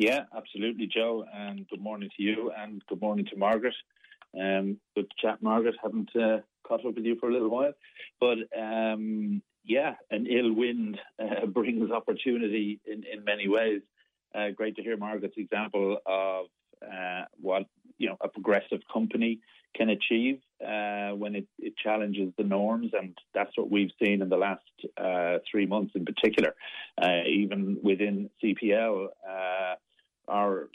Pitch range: 100-115 Hz